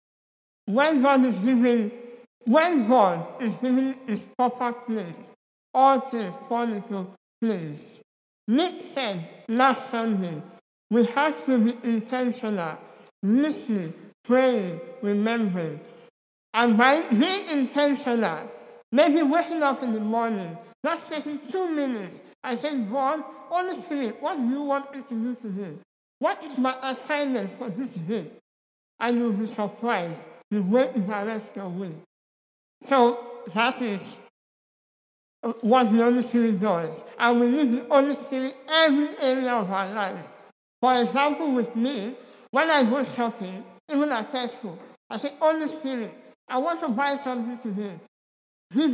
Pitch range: 215-275 Hz